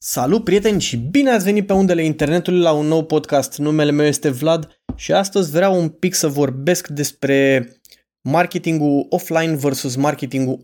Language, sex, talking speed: Romanian, male, 165 wpm